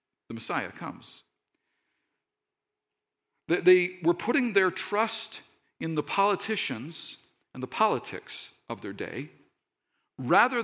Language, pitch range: English, 140-225 Hz